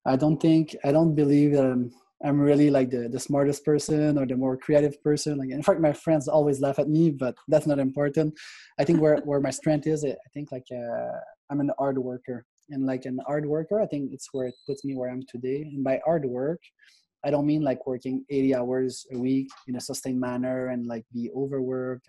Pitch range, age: 130-150 Hz, 20-39